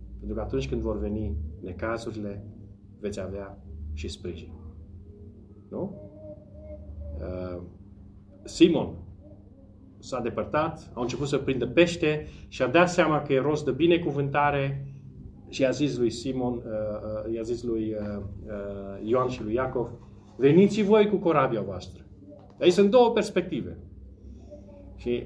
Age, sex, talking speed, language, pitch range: 30-49, male, 130 wpm, Romanian, 100-120 Hz